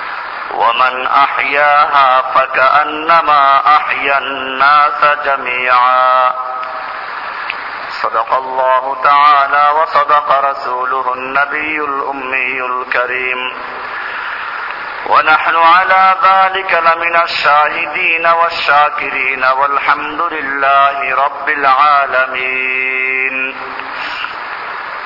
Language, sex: Bengali, male